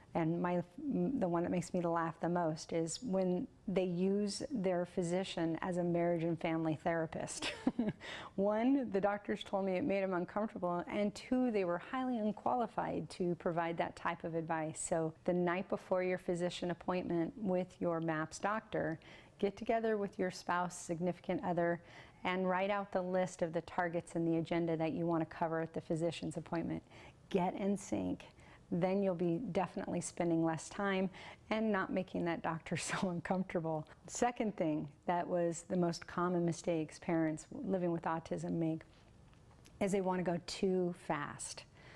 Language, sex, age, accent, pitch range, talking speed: English, female, 40-59, American, 165-190 Hz, 165 wpm